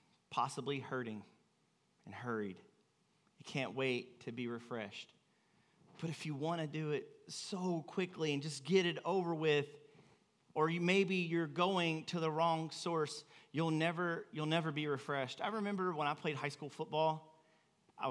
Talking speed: 160 wpm